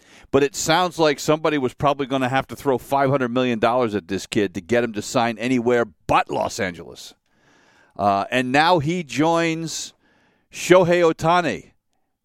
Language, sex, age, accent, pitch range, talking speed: English, male, 50-69, American, 120-155 Hz, 160 wpm